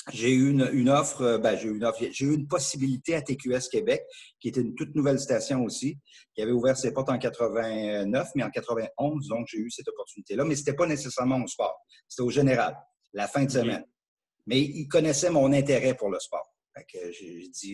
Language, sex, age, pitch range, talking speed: French, male, 50-69, 120-150 Hz, 220 wpm